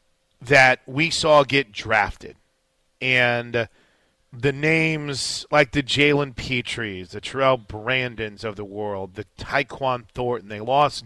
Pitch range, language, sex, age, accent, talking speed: 125-155 Hz, English, male, 30-49, American, 120 wpm